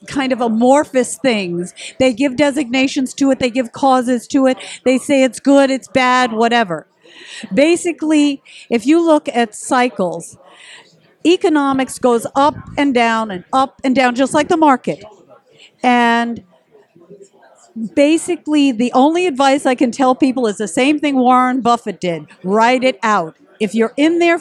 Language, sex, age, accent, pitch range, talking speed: English, female, 50-69, American, 220-285 Hz, 155 wpm